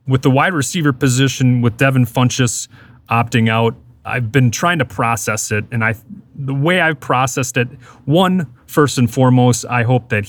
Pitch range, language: 115-135 Hz, English